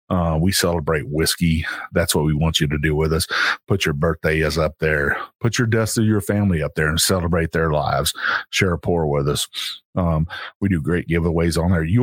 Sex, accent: male, American